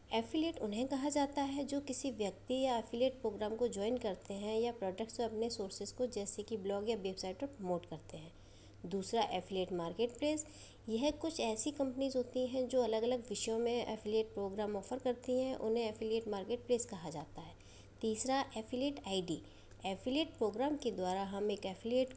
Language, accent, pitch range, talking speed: Hindi, native, 205-255 Hz, 175 wpm